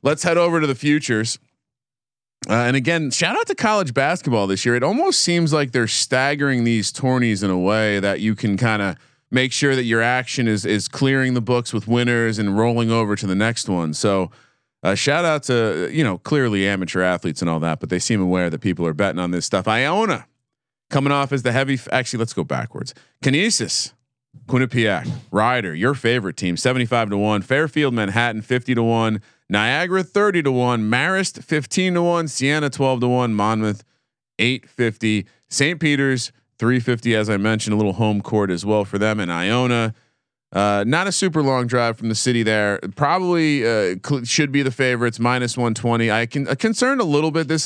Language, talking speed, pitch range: English, 195 wpm, 110-140 Hz